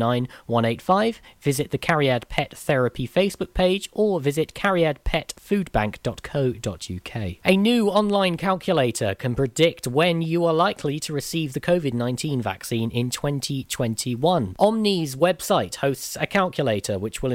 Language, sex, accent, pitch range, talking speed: English, male, British, 120-155 Hz, 115 wpm